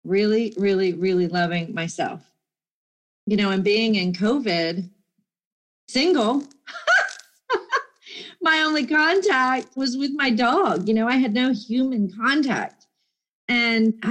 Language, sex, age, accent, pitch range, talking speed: English, female, 40-59, American, 180-265 Hz, 115 wpm